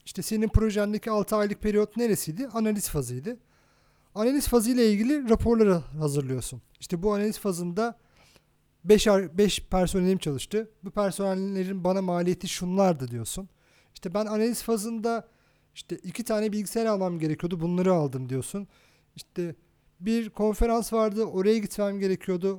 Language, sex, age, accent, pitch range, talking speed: Turkish, male, 40-59, native, 170-220 Hz, 130 wpm